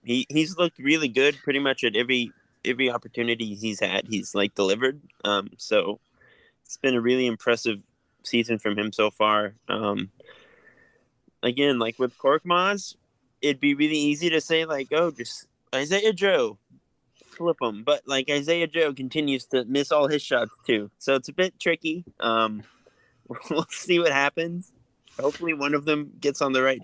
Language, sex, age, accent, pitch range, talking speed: English, male, 20-39, American, 115-145 Hz, 170 wpm